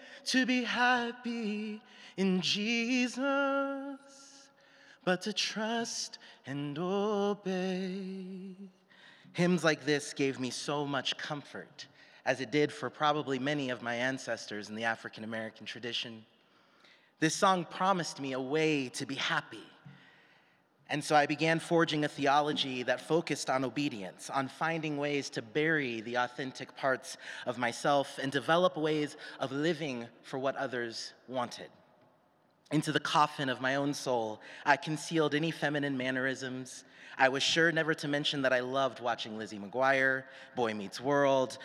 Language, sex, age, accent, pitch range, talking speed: English, male, 30-49, American, 130-175 Hz, 140 wpm